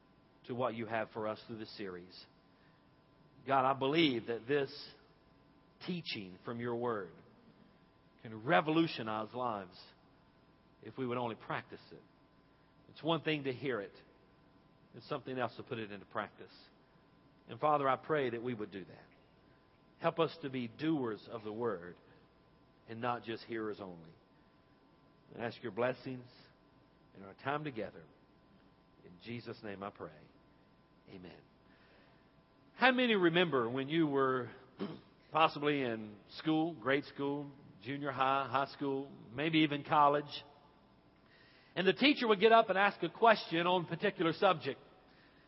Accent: American